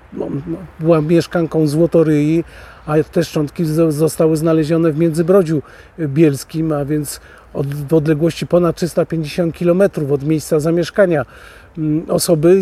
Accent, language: native, Polish